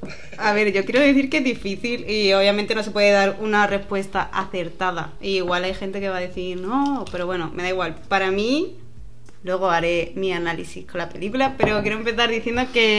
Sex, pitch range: female, 185-215 Hz